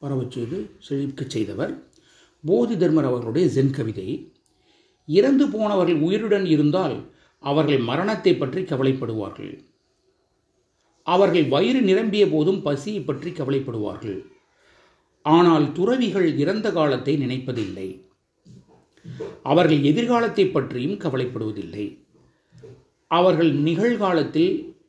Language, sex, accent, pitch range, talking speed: Tamil, male, native, 125-185 Hz, 80 wpm